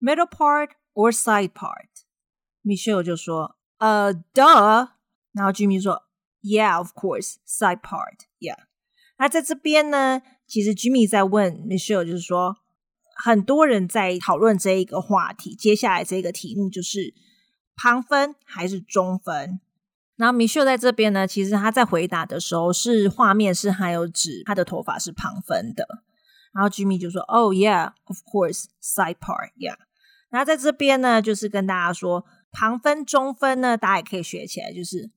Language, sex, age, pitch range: Chinese, female, 30-49, 185-235 Hz